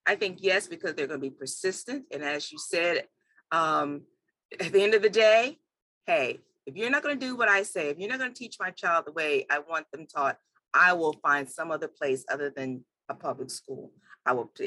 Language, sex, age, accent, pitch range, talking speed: English, female, 40-59, American, 160-260 Hz, 235 wpm